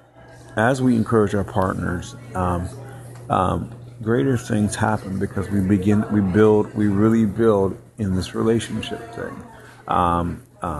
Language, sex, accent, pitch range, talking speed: English, male, American, 95-115 Hz, 135 wpm